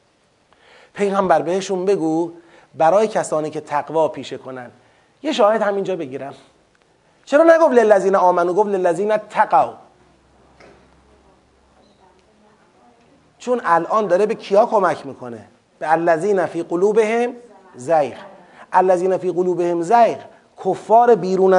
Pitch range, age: 170-225 Hz, 30-49